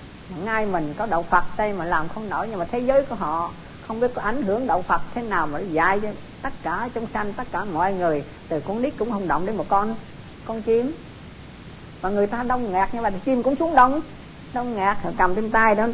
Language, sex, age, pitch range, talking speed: Vietnamese, female, 50-69, 175-235 Hz, 235 wpm